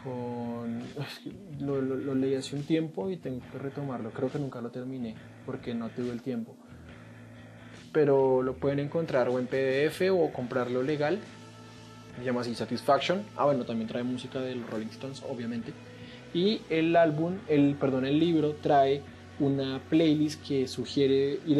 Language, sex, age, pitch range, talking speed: Spanish, male, 20-39, 115-140 Hz, 160 wpm